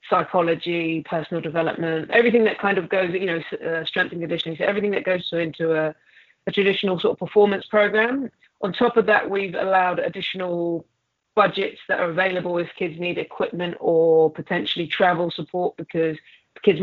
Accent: British